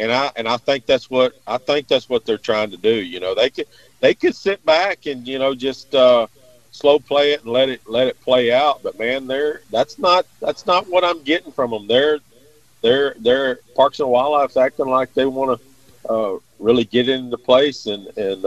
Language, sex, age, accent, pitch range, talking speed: English, male, 40-59, American, 110-140 Hz, 220 wpm